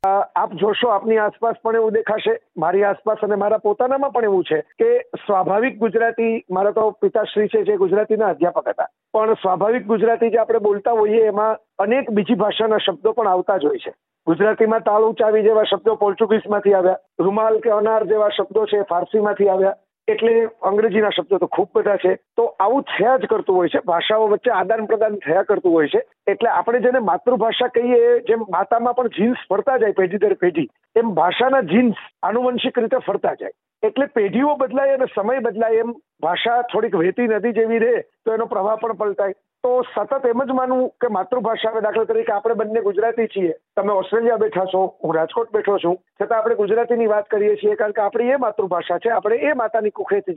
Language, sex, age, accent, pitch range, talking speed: Gujarati, male, 50-69, native, 205-240 Hz, 180 wpm